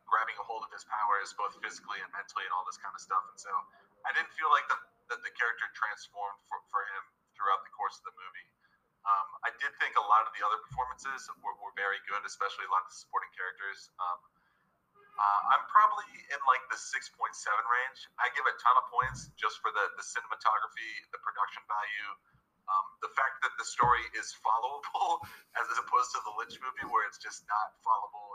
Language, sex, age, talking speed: English, male, 30-49, 210 wpm